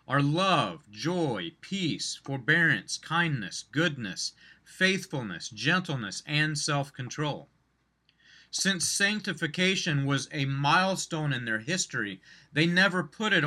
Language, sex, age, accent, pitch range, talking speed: English, male, 40-59, American, 140-175 Hz, 100 wpm